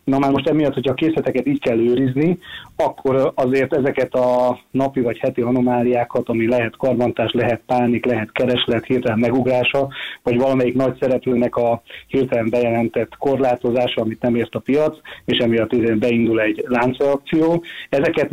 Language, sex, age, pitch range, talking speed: Hungarian, male, 30-49, 120-135 Hz, 155 wpm